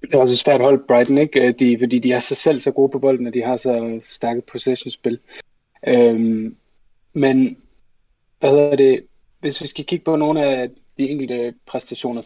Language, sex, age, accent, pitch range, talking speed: Danish, male, 30-49, native, 115-135 Hz, 190 wpm